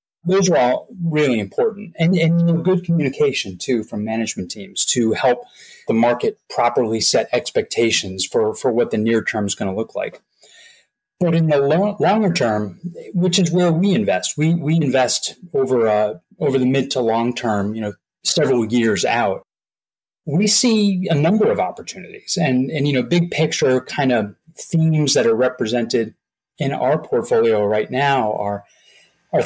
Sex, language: male, English